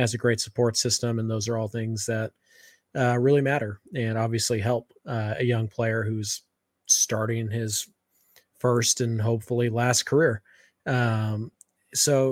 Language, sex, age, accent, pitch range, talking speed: English, male, 20-39, American, 115-130 Hz, 150 wpm